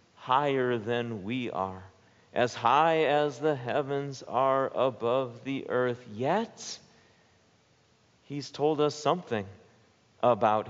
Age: 50-69